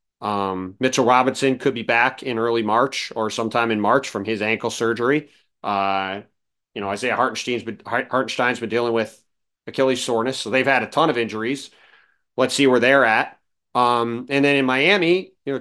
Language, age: English, 30-49